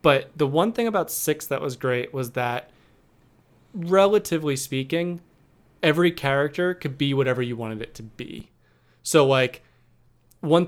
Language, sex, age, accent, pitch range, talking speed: English, male, 20-39, American, 125-150 Hz, 145 wpm